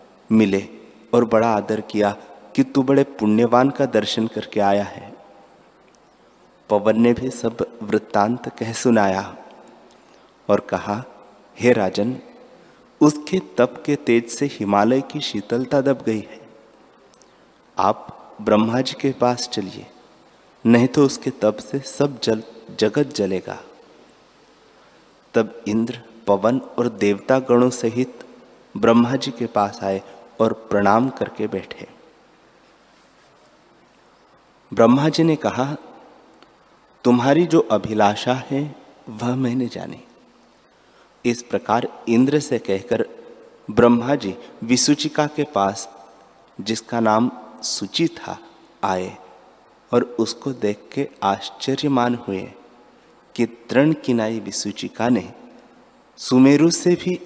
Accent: native